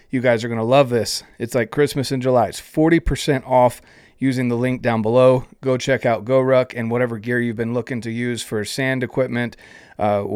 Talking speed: 210 wpm